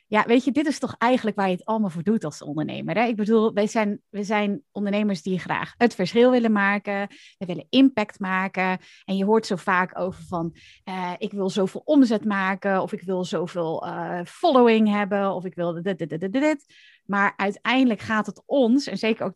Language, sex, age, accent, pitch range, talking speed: Dutch, female, 30-49, Dutch, 185-225 Hz, 210 wpm